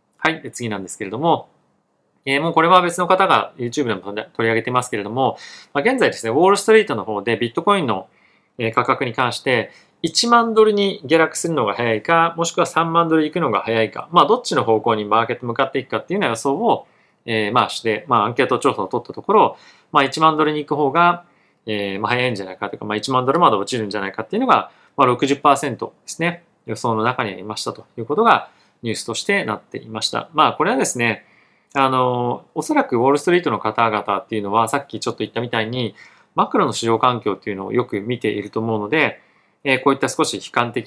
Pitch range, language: 110-160 Hz, Japanese